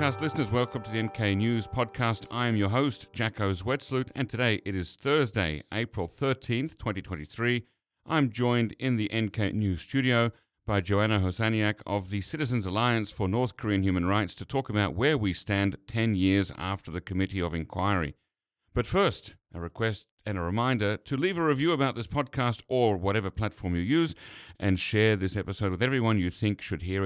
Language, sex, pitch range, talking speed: English, male, 95-120 Hz, 180 wpm